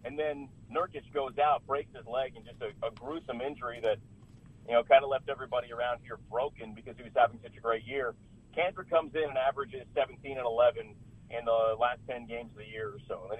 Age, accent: 30-49, American